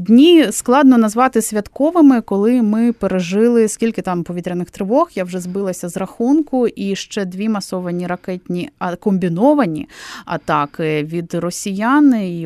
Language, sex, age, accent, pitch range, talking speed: Ukrainian, female, 20-39, native, 175-225 Hz, 130 wpm